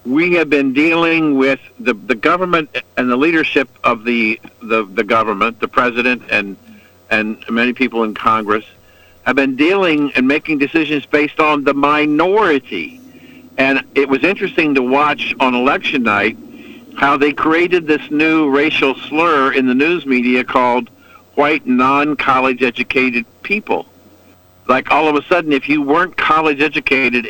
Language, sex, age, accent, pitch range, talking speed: English, male, 60-79, American, 120-150 Hz, 150 wpm